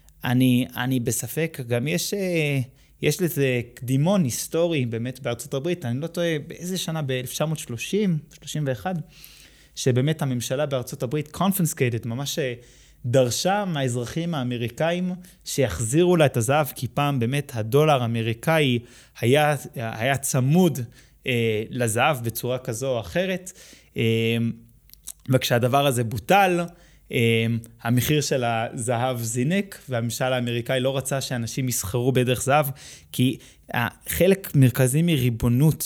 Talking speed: 110 wpm